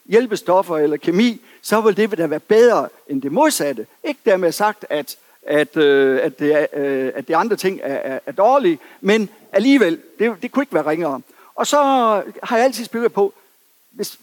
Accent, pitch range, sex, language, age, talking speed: native, 170-230 Hz, male, Danish, 60-79, 185 wpm